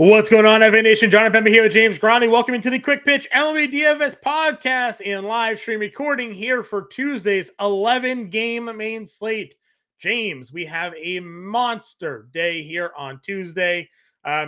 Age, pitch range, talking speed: 20-39, 175-235 Hz, 160 wpm